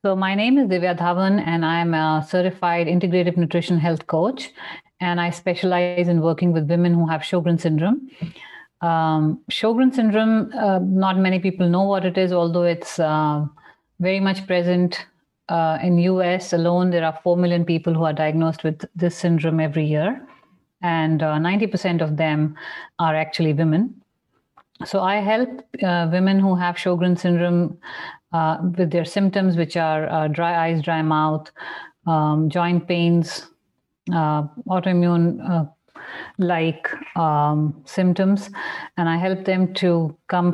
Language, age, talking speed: English, 50-69, 150 wpm